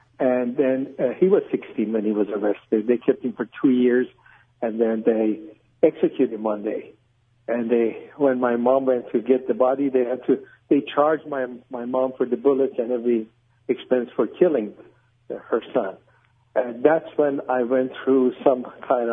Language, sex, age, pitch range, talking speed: English, male, 60-79, 115-145 Hz, 185 wpm